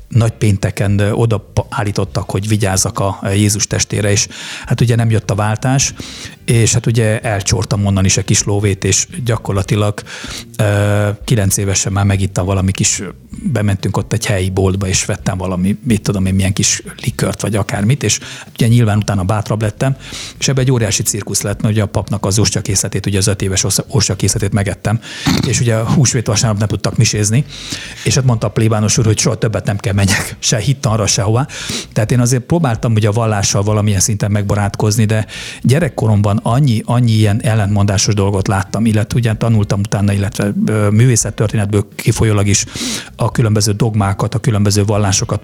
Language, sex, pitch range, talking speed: Hungarian, male, 100-120 Hz, 170 wpm